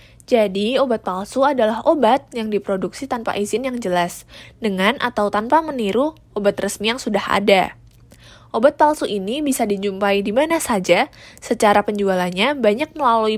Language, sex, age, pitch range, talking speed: Indonesian, female, 20-39, 195-255 Hz, 145 wpm